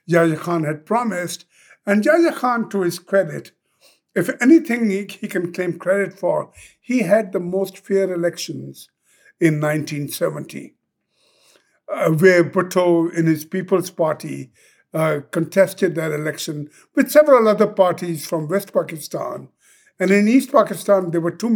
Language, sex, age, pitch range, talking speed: English, male, 60-79, 160-195 Hz, 140 wpm